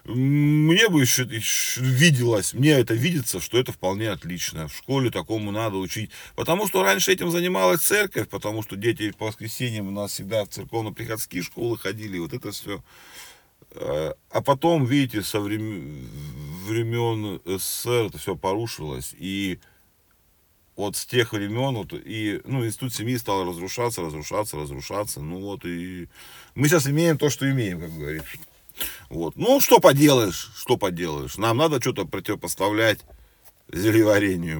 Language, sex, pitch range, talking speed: Russian, male, 95-135 Hz, 140 wpm